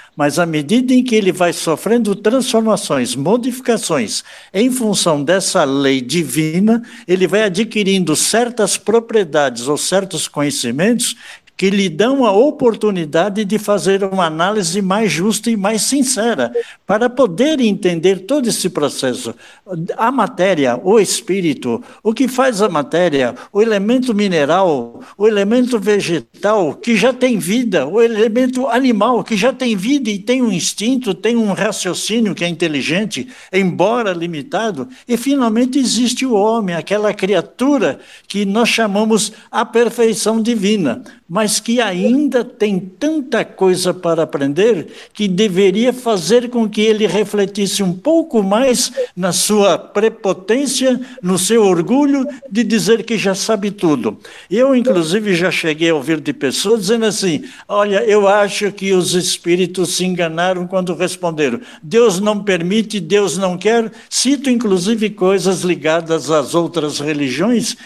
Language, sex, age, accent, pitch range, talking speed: Portuguese, male, 60-79, Brazilian, 180-235 Hz, 140 wpm